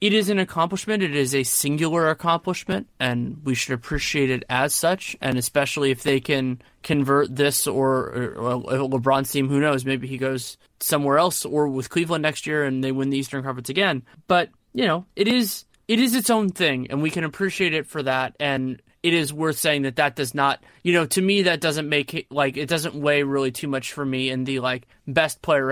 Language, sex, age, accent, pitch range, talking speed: English, male, 20-39, American, 135-175 Hz, 215 wpm